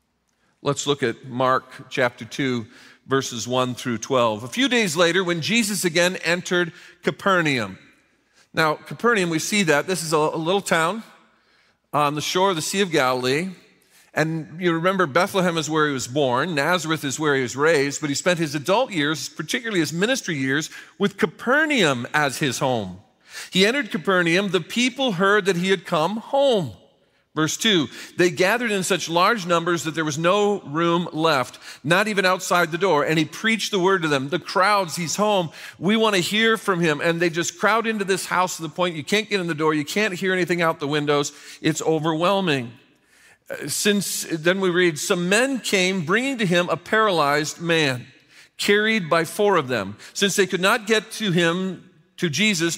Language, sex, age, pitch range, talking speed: English, male, 40-59, 150-195 Hz, 190 wpm